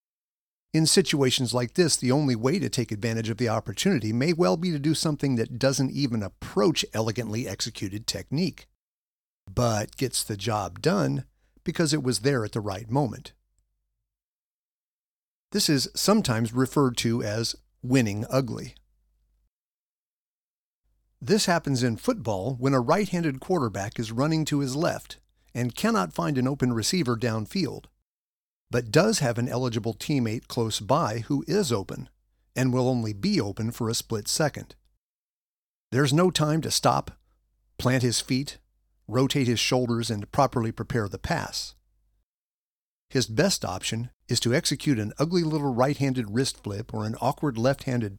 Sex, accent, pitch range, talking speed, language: male, American, 110-140 Hz, 150 wpm, English